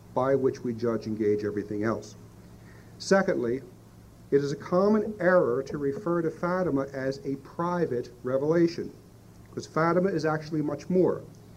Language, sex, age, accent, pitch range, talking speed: English, male, 50-69, American, 130-170 Hz, 145 wpm